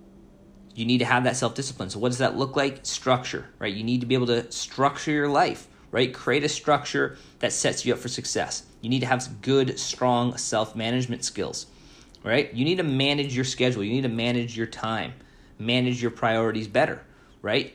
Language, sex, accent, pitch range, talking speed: English, male, American, 115-135 Hz, 205 wpm